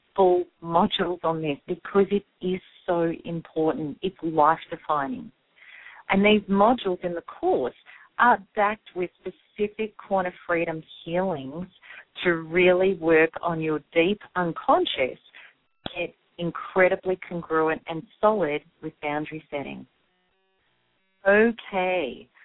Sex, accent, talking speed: female, Australian, 105 wpm